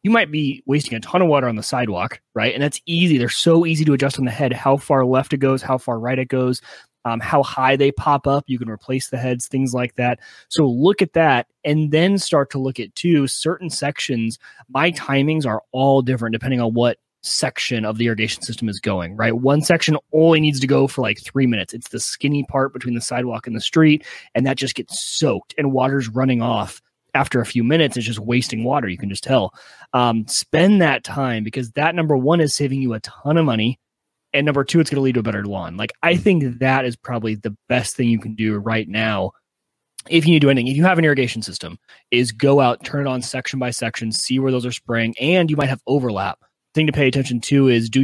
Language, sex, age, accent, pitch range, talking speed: English, male, 30-49, American, 120-145 Hz, 245 wpm